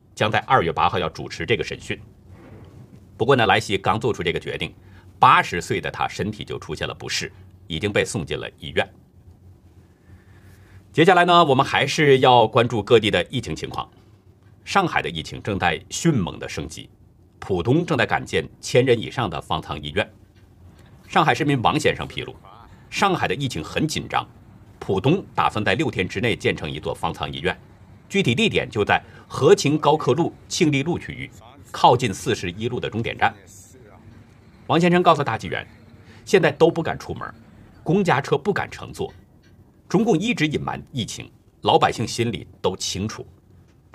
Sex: male